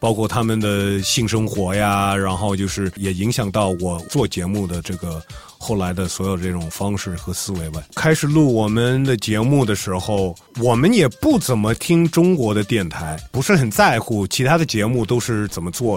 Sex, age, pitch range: male, 30-49, 105-155 Hz